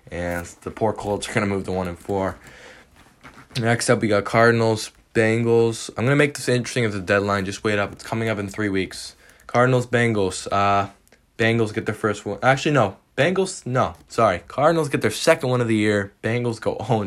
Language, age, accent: English, 10-29, American